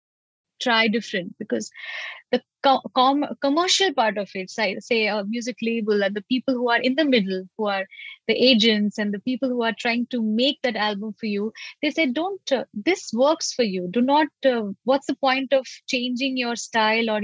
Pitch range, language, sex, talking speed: 215-275 Hz, Arabic, female, 190 wpm